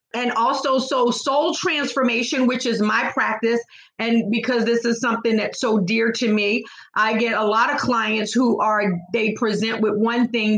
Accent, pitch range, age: American, 215-250 Hz, 40-59